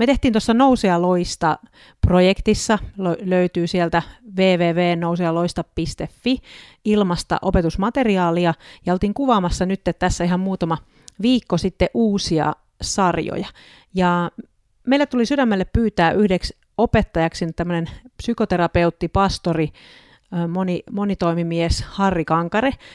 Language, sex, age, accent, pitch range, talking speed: Finnish, female, 40-59, native, 170-205 Hz, 85 wpm